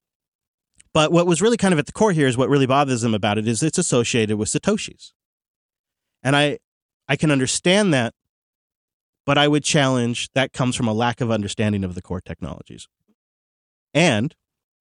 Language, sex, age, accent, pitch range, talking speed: English, male, 30-49, American, 105-135 Hz, 180 wpm